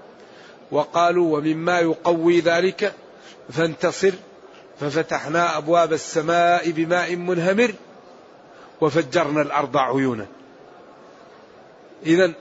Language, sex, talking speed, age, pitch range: Arabic, male, 70 wpm, 40-59, 160-190 Hz